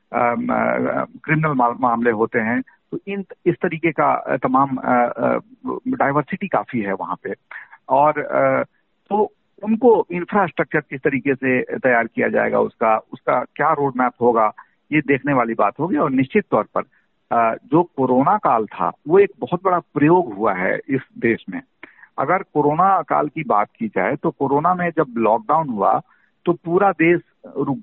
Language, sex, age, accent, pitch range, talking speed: Hindi, male, 50-69, native, 130-180 Hz, 155 wpm